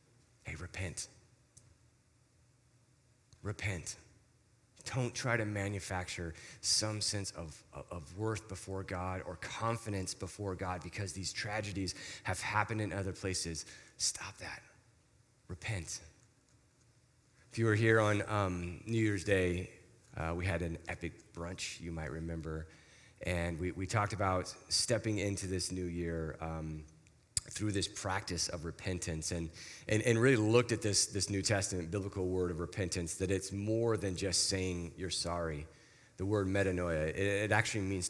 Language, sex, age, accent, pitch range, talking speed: English, male, 30-49, American, 90-110 Hz, 140 wpm